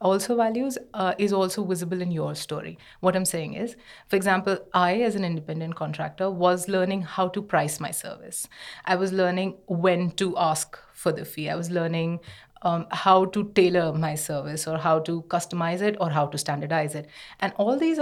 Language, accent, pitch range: English, Indian, 165-195 Hz